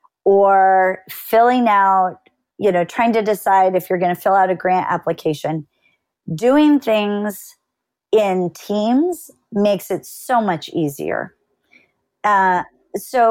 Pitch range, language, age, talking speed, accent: 190-250 Hz, English, 40-59, 125 wpm, American